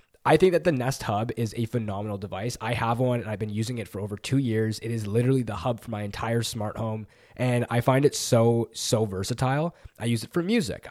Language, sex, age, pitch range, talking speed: English, male, 20-39, 110-135 Hz, 240 wpm